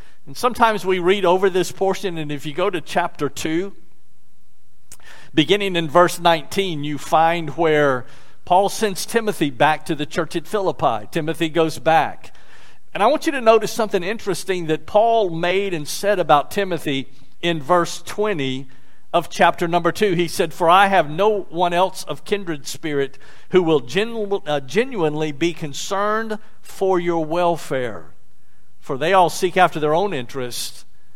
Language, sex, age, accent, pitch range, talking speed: English, male, 50-69, American, 150-190 Hz, 160 wpm